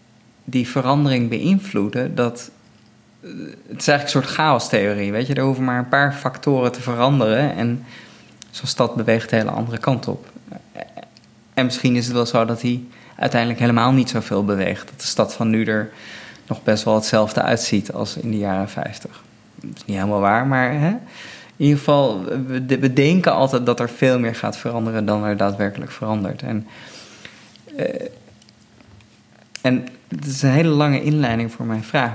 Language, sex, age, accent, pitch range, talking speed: English, male, 20-39, Dutch, 115-135 Hz, 175 wpm